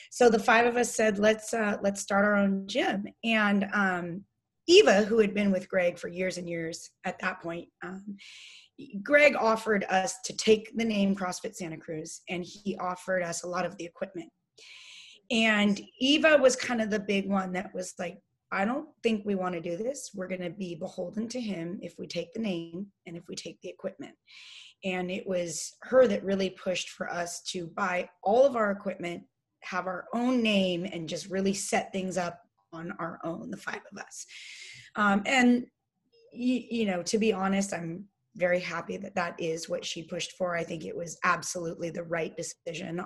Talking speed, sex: 200 wpm, female